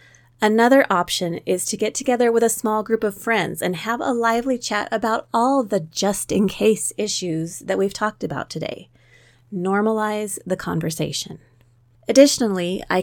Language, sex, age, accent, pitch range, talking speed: English, female, 30-49, American, 155-215 Hz, 145 wpm